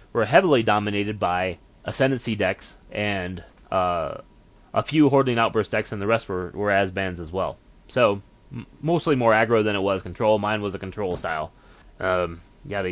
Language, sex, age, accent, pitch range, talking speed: English, male, 30-49, American, 110-140 Hz, 175 wpm